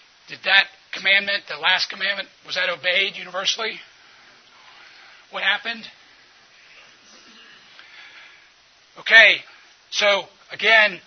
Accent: American